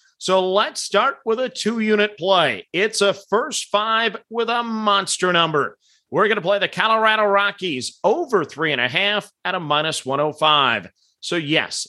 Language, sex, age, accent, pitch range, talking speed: English, male, 40-59, American, 160-205 Hz, 165 wpm